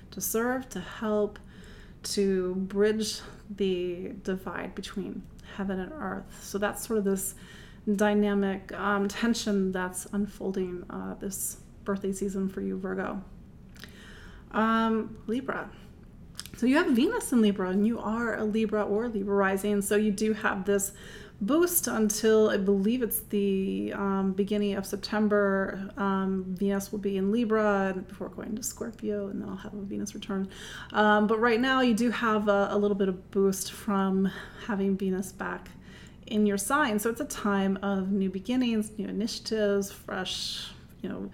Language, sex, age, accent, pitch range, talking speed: English, female, 30-49, American, 195-220 Hz, 155 wpm